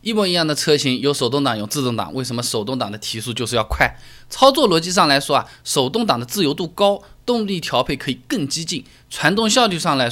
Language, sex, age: Chinese, male, 20-39